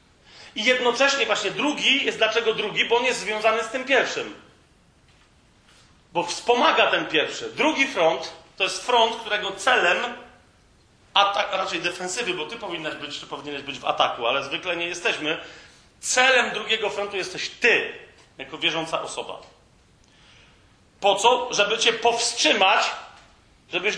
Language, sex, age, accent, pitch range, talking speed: Polish, male, 40-59, native, 200-260 Hz, 140 wpm